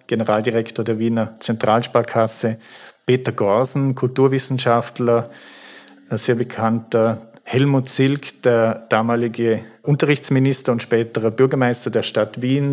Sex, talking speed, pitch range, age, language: male, 95 wpm, 115-135 Hz, 40-59, English